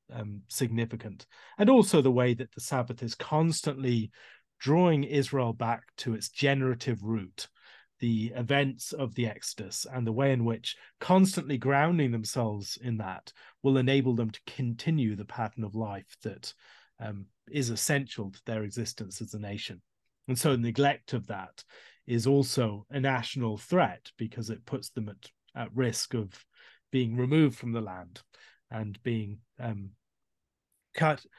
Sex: male